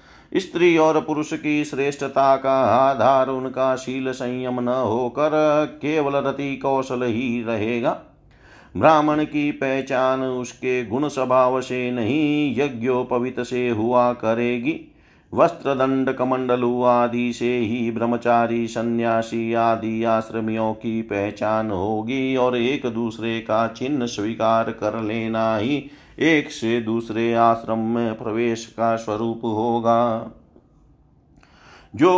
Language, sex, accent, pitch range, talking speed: Hindi, male, native, 115-140 Hz, 115 wpm